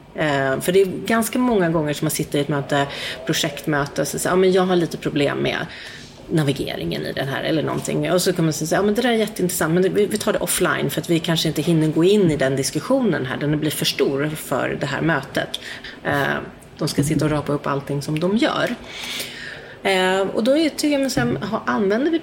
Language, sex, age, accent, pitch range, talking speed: Swedish, female, 30-49, native, 150-215 Hz, 210 wpm